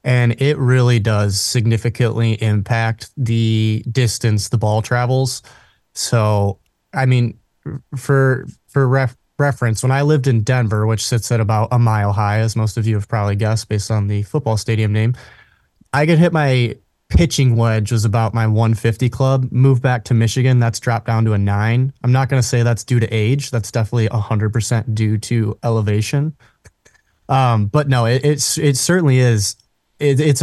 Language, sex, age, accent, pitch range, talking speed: English, male, 20-39, American, 110-130 Hz, 175 wpm